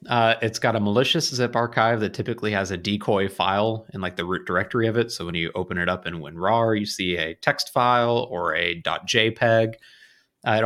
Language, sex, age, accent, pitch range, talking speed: English, male, 30-49, American, 95-120 Hz, 210 wpm